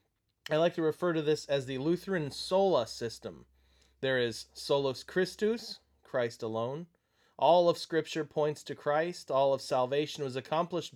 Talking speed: 155 wpm